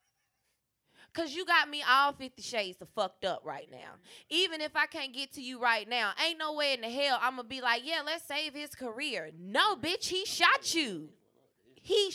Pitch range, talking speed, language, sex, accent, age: 210-285 Hz, 205 wpm, English, female, American, 20-39